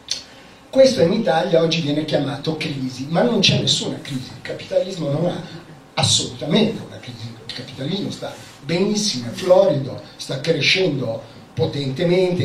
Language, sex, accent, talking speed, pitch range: Italian, male, native, 135 wpm, 135-190 Hz